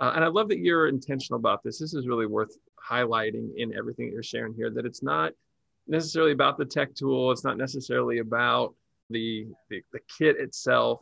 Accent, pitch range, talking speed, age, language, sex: American, 115-145 Hz, 200 wpm, 40-59, English, male